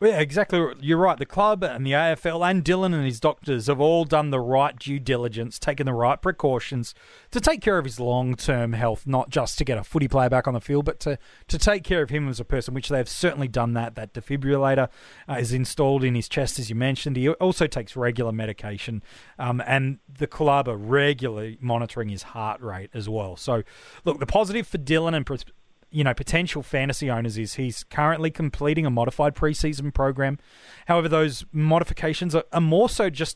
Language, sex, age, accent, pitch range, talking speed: English, male, 30-49, Australian, 120-155 Hz, 205 wpm